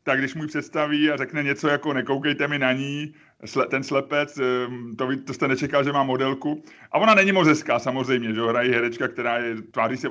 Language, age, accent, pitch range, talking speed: Czech, 30-49, native, 135-165 Hz, 200 wpm